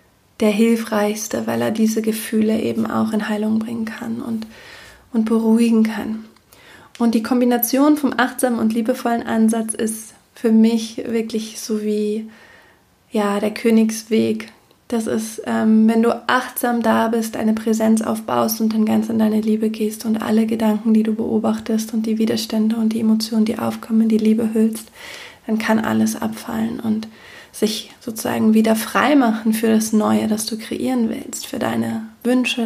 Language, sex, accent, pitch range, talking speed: German, female, German, 220-230 Hz, 160 wpm